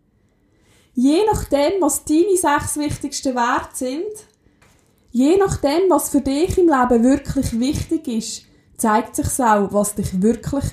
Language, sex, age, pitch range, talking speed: German, female, 20-39, 210-285 Hz, 140 wpm